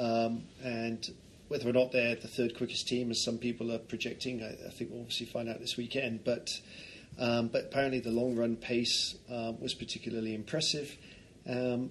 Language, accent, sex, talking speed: English, British, male, 185 wpm